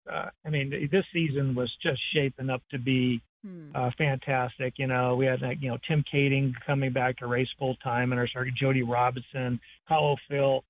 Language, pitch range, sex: English, 125-140 Hz, male